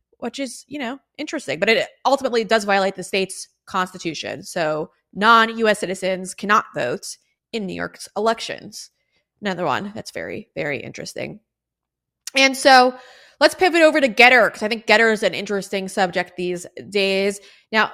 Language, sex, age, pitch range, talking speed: English, female, 20-39, 195-245 Hz, 155 wpm